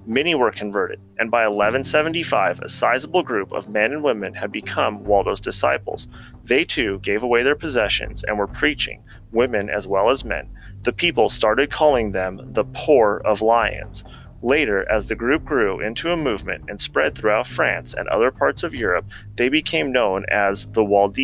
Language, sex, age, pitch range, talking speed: English, male, 30-49, 105-140 Hz, 175 wpm